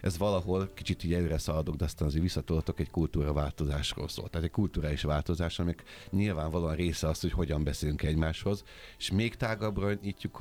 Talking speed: 160 wpm